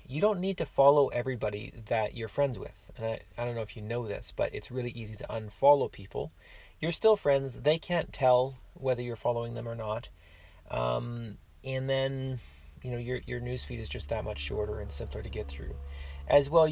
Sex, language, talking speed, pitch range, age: male, English, 210 wpm, 105-135 Hz, 30-49